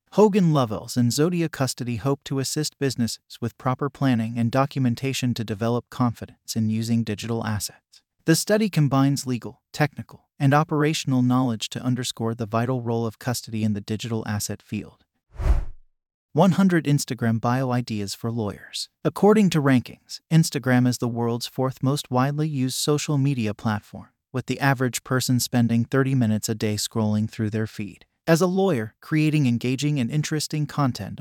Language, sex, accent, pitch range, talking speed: English, male, American, 115-140 Hz, 155 wpm